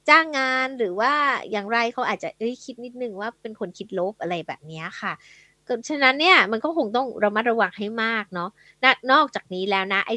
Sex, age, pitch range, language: female, 20-39, 205-270 Hz, Thai